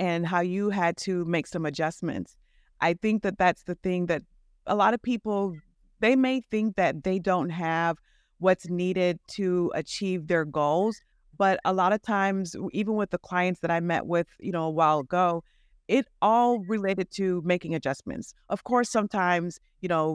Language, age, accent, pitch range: English, 30-49, American, 170-195 Hz